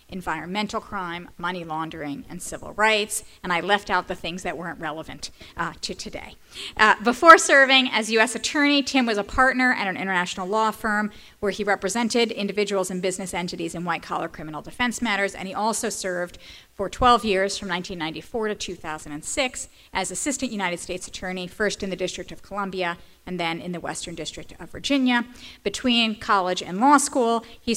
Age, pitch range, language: 40-59, 180-225 Hz, English